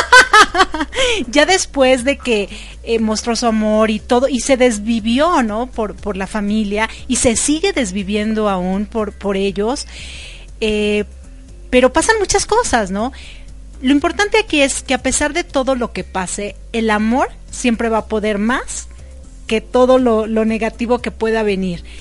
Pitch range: 215-260 Hz